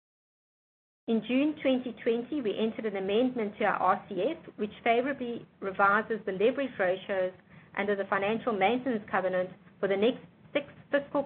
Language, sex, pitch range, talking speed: English, female, 190-240 Hz, 140 wpm